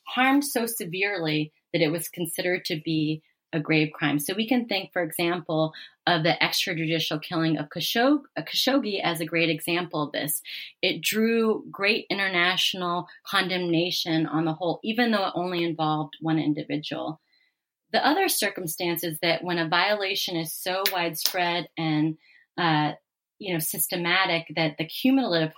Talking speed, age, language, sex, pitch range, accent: 155 wpm, 30-49, English, female, 155-185 Hz, American